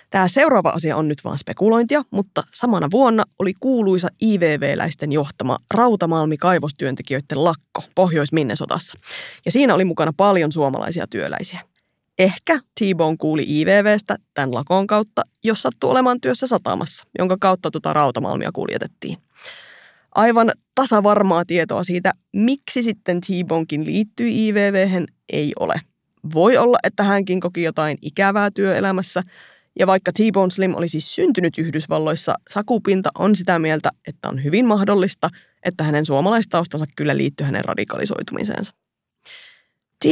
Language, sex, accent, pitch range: Finnish, female, native, 155-210 Hz